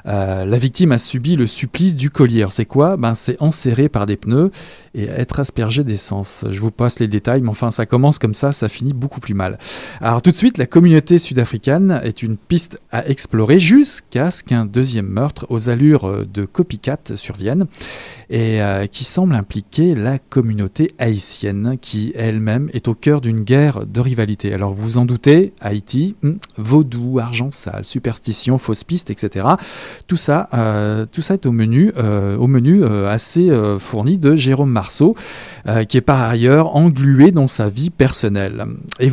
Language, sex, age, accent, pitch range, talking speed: French, male, 40-59, French, 110-150 Hz, 180 wpm